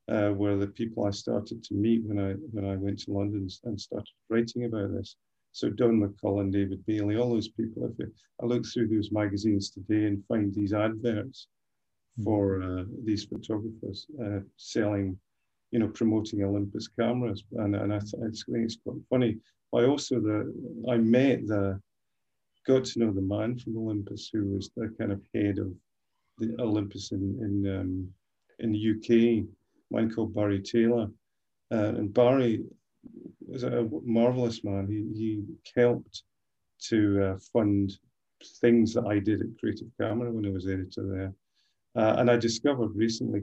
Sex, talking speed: male, 165 wpm